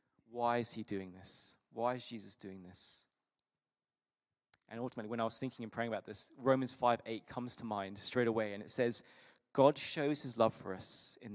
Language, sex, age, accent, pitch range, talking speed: English, male, 20-39, British, 100-125 Hz, 200 wpm